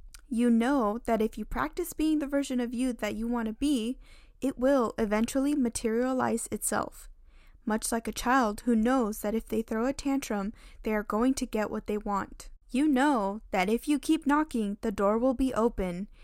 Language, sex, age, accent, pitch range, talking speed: English, female, 10-29, American, 210-255 Hz, 195 wpm